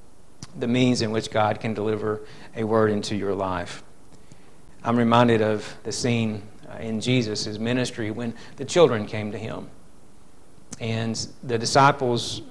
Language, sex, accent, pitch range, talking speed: Bengali, male, American, 110-130 Hz, 140 wpm